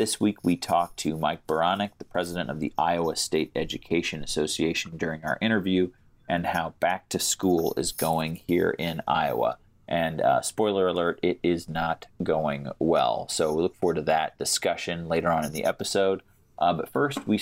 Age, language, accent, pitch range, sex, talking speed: 30-49, English, American, 80-90 Hz, male, 185 wpm